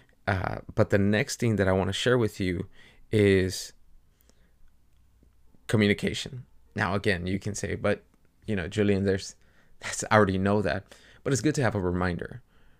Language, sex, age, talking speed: English, male, 20-39, 165 wpm